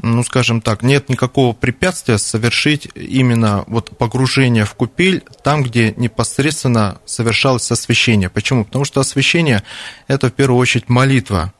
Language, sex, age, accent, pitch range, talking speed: Russian, male, 30-49, native, 115-135 Hz, 140 wpm